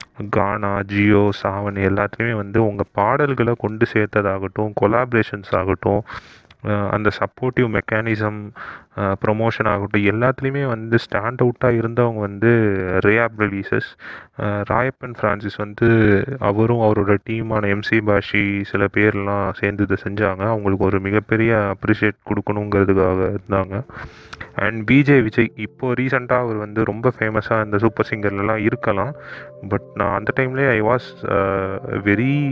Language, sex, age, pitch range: Tamil, male, 30-49, 100-115 Hz